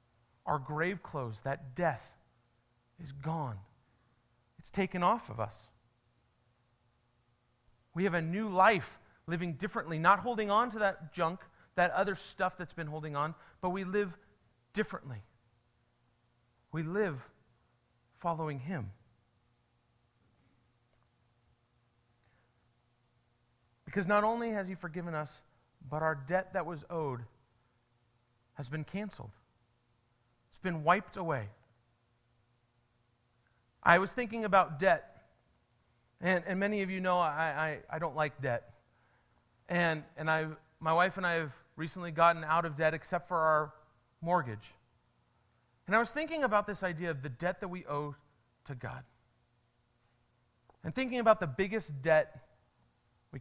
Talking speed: 130 wpm